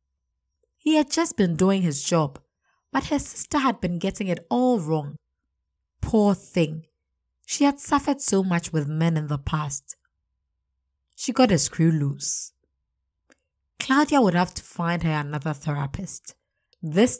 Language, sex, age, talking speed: English, female, 20-39, 145 wpm